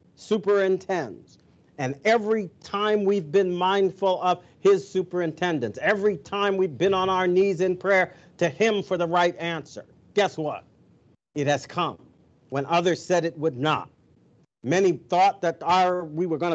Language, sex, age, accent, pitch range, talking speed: English, male, 50-69, American, 160-190 Hz, 150 wpm